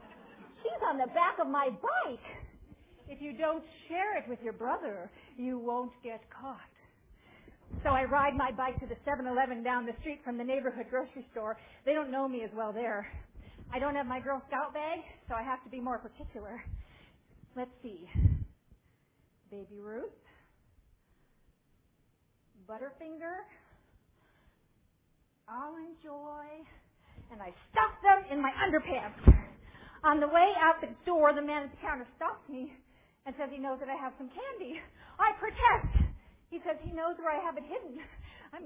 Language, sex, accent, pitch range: English, female, American, 245-315 Hz